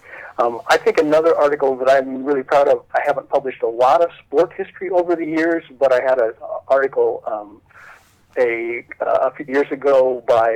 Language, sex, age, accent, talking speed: English, male, 50-69, American, 195 wpm